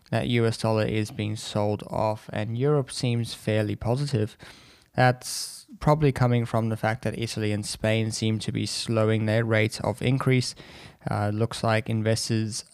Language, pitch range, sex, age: English, 110-125 Hz, male, 20-39